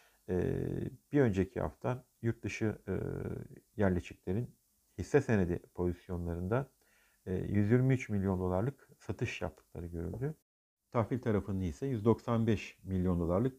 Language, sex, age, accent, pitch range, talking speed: Turkish, male, 50-69, native, 90-125 Hz, 90 wpm